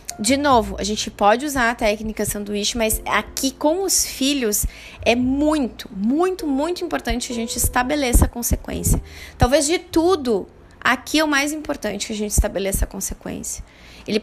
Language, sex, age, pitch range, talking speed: Portuguese, female, 20-39, 200-265 Hz, 170 wpm